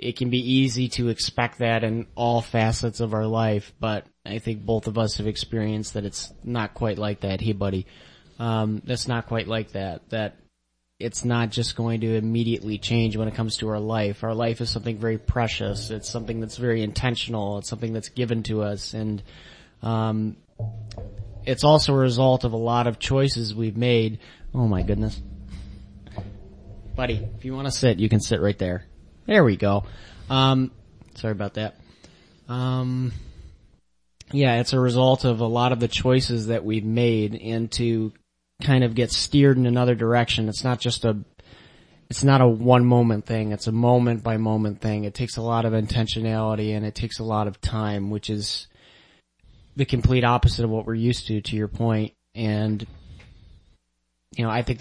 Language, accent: English, American